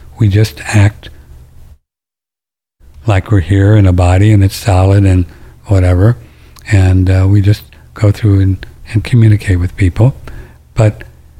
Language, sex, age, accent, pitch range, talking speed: English, male, 60-79, American, 80-105 Hz, 135 wpm